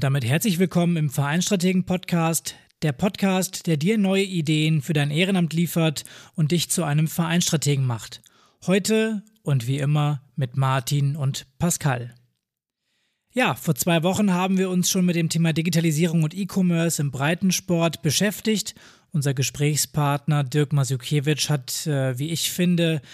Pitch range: 145-175 Hz